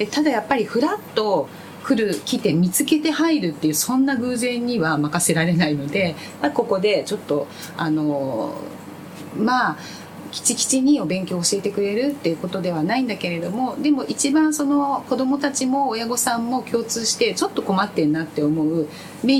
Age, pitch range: 30-49, 155-250 Hz